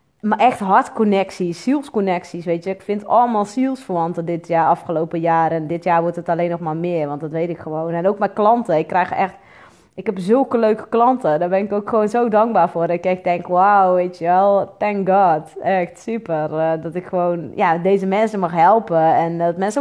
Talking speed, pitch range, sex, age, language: 210 wpm, 165-195 Hz, female, 20-39, Dutch